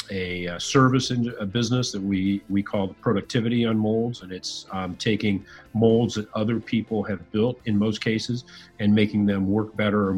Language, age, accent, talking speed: English, 40-59, American, 190 wpm